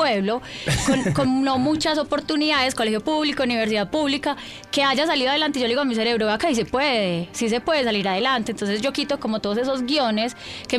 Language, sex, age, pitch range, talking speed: Spanish, female, 10-29, 220-270 Hz, 205 wpm